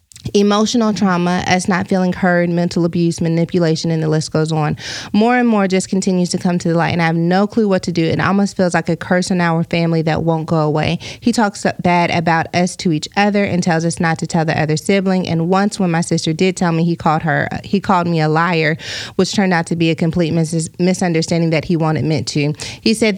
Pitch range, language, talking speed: 165-190 Hz, English, 245 wpm